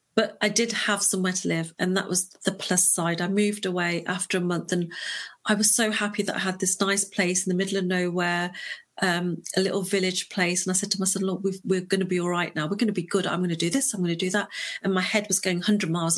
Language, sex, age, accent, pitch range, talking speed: English, female, 40-59, British, 180-215 Hz, 280 wpm